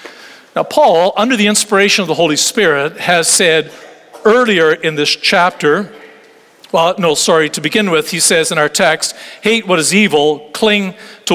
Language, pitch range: English, 160-220 Hz